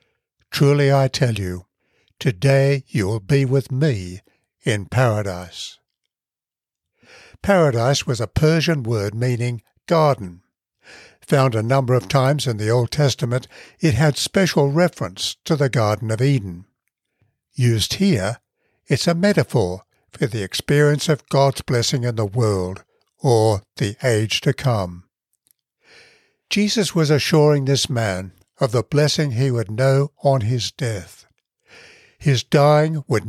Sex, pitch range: male, 110-150 Hz